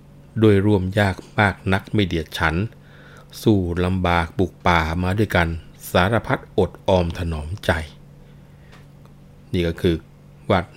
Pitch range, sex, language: 85-105 Hz, male, Thai